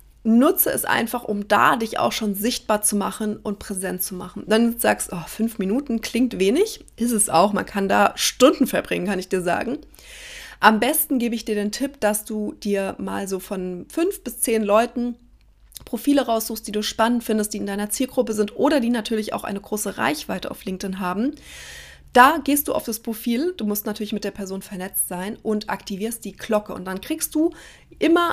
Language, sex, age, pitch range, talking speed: German, female, 30-49, 200-245 Hz, 200 wpm